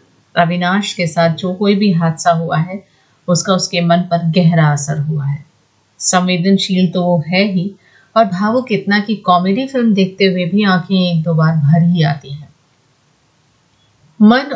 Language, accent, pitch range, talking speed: Hindi, native, 155-190 Hz, 165 wpm